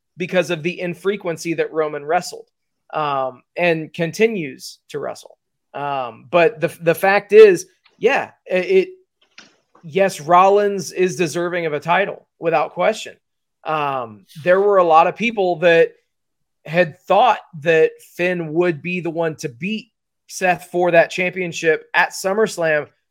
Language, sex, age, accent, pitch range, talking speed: English, male, 30-49, American, 165-195 Hz, 140 wpm